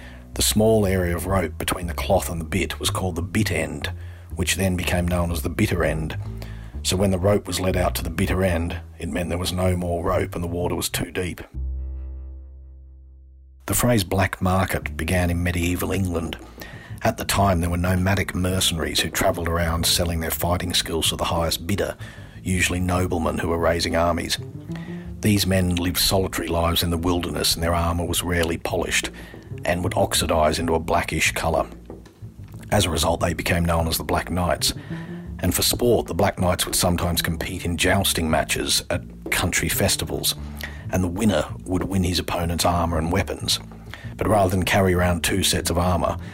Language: English